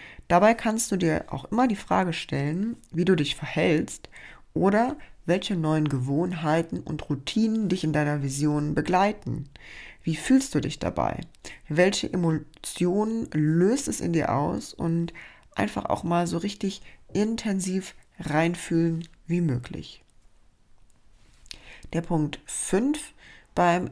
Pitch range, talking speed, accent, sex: 150-185 Hz, 125 wpm, German, female